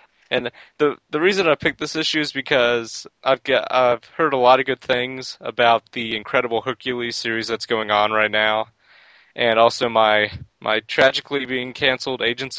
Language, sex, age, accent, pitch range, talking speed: English, male, 20-39, American, 110-130 Hz, 175 wpm